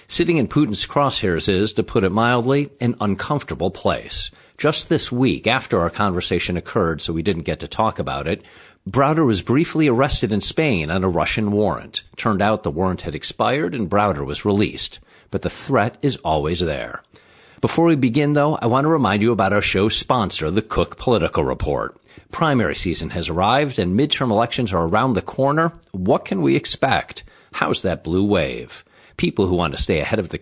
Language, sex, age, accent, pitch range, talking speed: English, male, 50-69, American, 95-125 Hz, 190 wpm